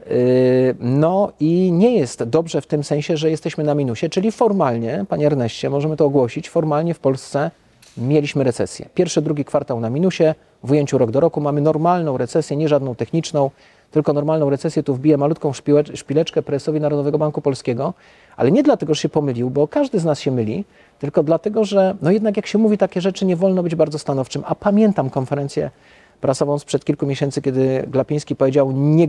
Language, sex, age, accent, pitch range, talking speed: Polish, male, 40-59, native, 145-185 Hz, 180 wpm